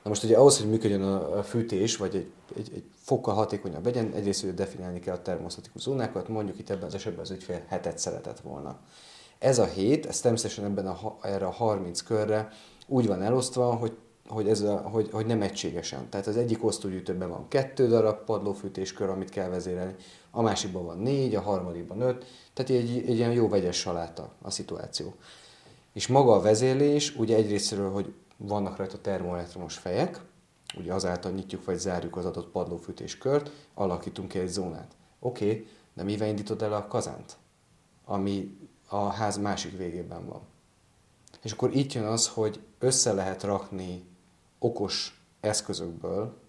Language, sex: Hungarian, male